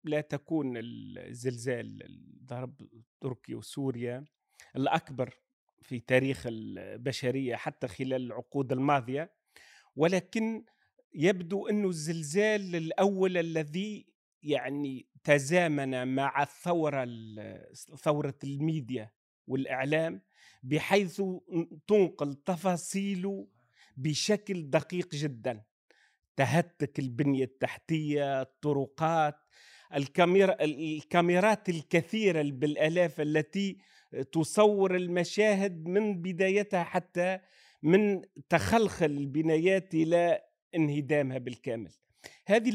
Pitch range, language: 140-185 Hz, Arabic